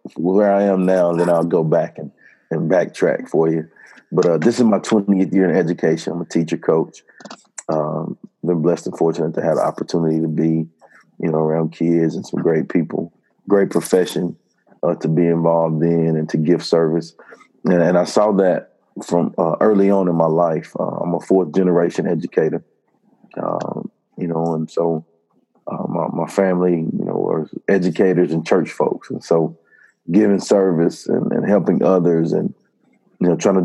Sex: male